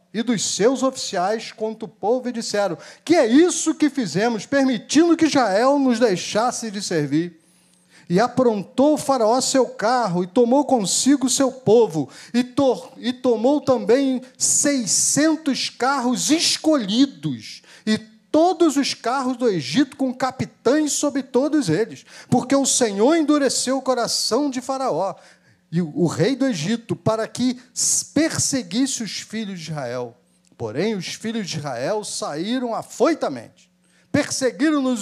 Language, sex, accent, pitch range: Portuguese, male, Brazilian, 180-265 Hz